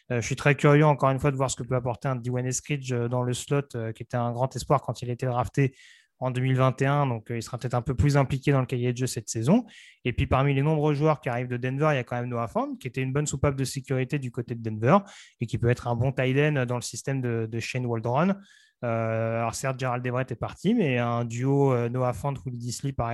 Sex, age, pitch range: male, 20-39, 120-150 Hz